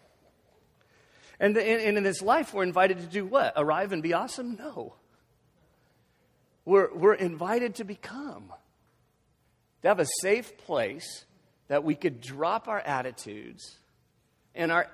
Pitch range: 115-180 Hz